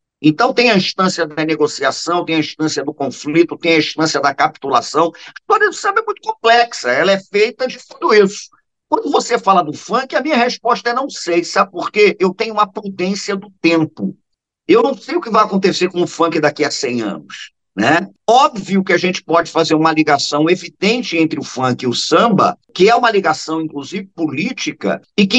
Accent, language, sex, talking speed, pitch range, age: Brazilian, Portuguese, male, 205 wpm, 165-240 Hz, 50-69